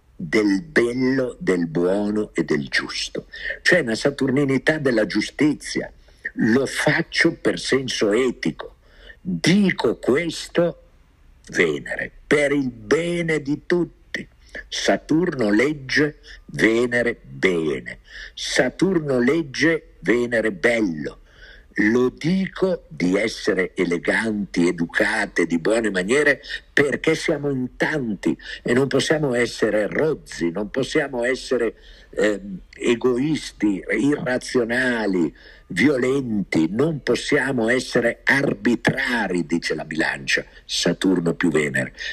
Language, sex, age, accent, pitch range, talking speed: Italian, male, 50-69, native, 105-145 Hz, 95 wpm